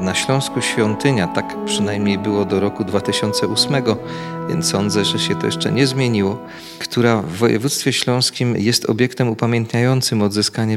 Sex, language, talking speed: male, Polish, 140 wpm